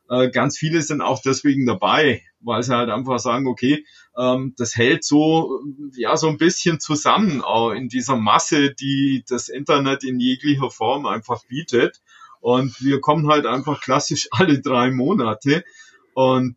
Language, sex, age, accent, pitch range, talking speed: German, male, 30-49, German, 125-150 Hz, 150 wpm